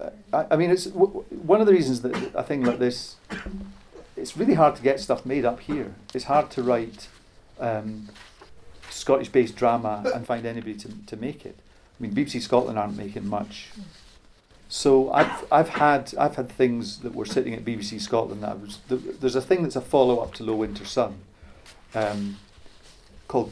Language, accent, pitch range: English, British, 105-125 Hz